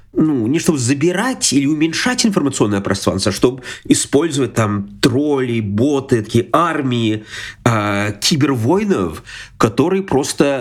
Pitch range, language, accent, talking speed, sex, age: 100-140 Hz, Ukrainian, native, 115 wpm, male, 30-49